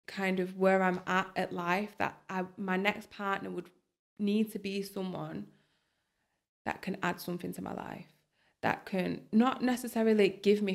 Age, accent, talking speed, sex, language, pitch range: 20-39, British, 165 wpm, female, English, 180-200 Hz